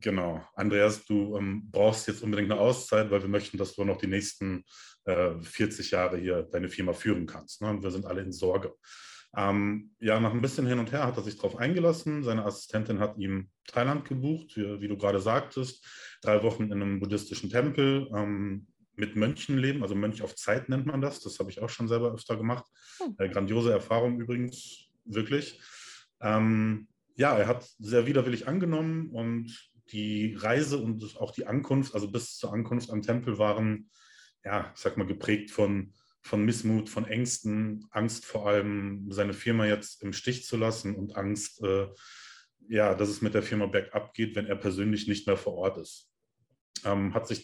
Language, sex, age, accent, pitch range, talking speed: German, male, 30-49, German, 100-120 Hz, 190 wpm